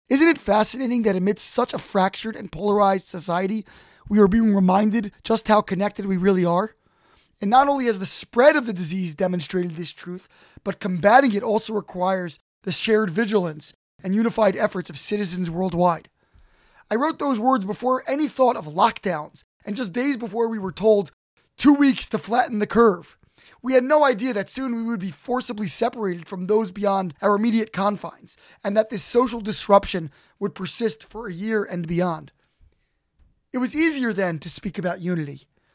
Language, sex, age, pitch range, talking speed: English, male, 20-39, 185-230 Hz, 180 wpm